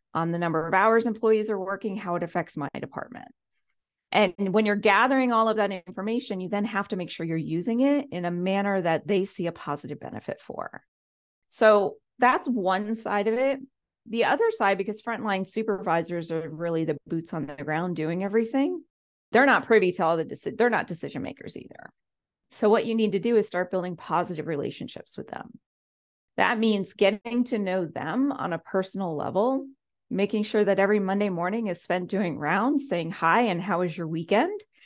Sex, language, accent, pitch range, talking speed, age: female, English, American, 175-230 Hz, 195 wpm, 40-59